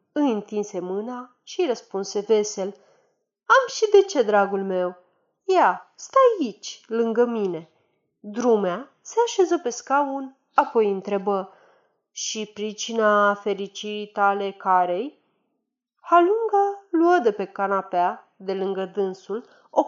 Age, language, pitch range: 30-49, Romanian, 195-280 Hz